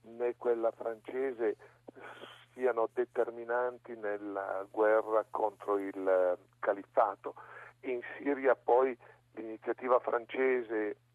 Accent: native